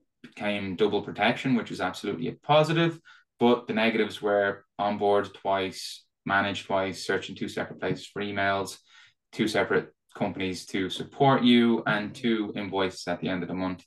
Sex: male